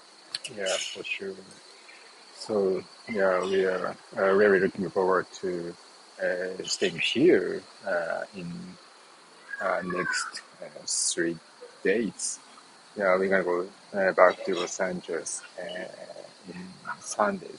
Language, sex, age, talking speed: English, male, 30-49, 115 wpm